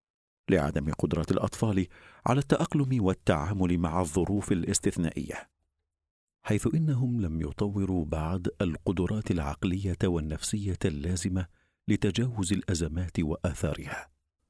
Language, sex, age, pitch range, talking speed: Arabic, male, 50-69, 80-105 Hz, 85 wpm